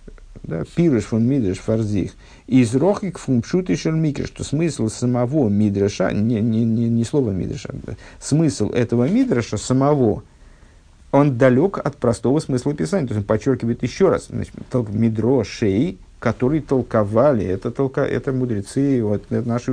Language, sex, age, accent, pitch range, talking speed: Russian, male, 50-69, native, 105-130 Hz, 135 wpm